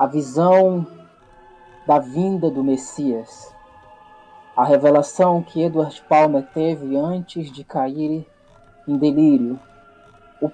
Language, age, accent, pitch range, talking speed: Portuguese, 20-39, Brazilian, 130-170 Hz, 100 wpm